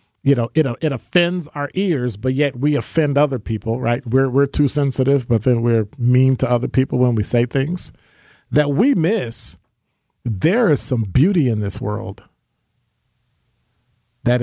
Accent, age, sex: American, 50-69, male